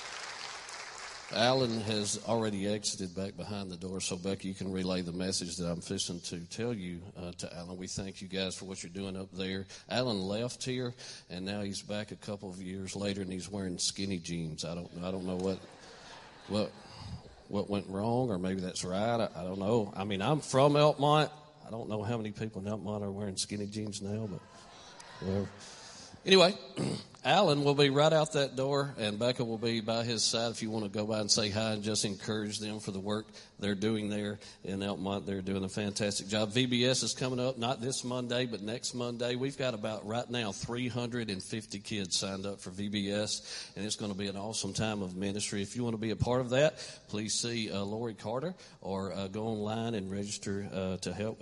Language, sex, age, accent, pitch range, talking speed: English, male, 40-59, American, 95-120 Hz, 215 wpm